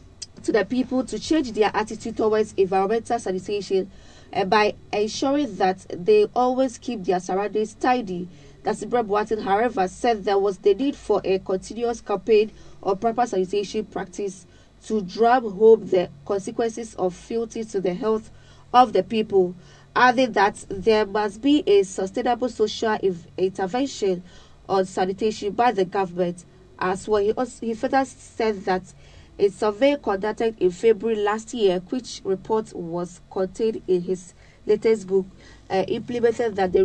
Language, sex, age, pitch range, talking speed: English, female, 30-49, 185-225 Hz, 150 wpm